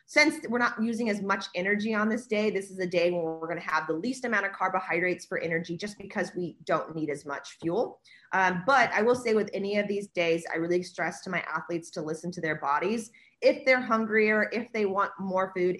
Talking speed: 240 wpm